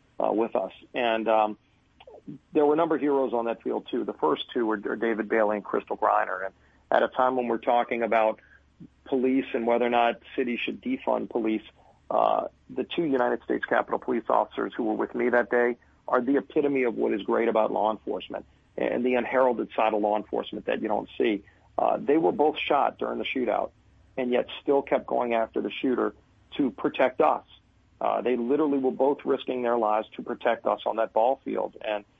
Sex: male